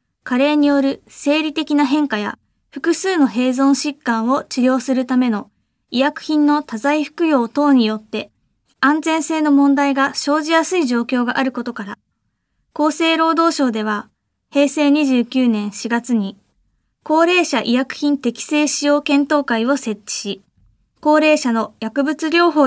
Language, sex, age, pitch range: Japanese, female, 20-39, 235-300 Hz